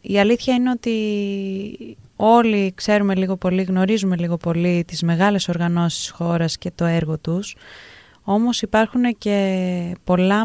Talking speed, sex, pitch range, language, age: 130 wpm, female, 175-220 Hz, Greek, 20-39